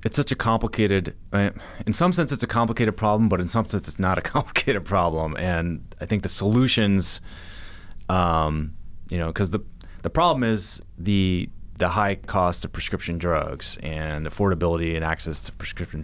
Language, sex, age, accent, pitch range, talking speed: English, male, 30-49, American, 80-95 Hz, 170 wpm